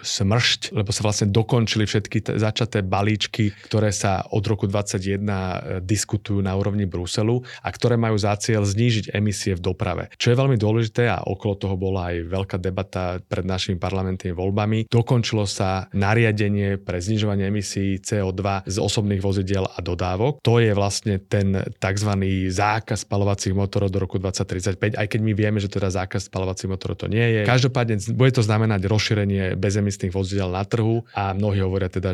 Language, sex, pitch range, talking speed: Slovak, male, 95-110 Hz, 165 wpm